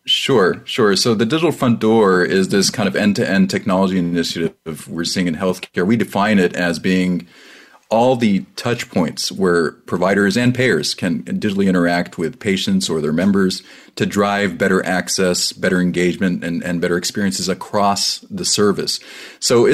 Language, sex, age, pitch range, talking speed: English, male, 30-49, 90-110 Hz, 160 wpm